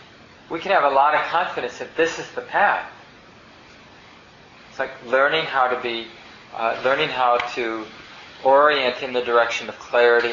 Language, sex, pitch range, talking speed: English, male, 115-135 Hz, 165 wpm